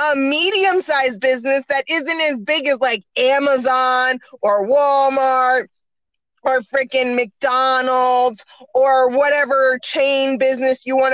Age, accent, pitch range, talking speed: 20-39, American, 240-275 Hz, 120 wpm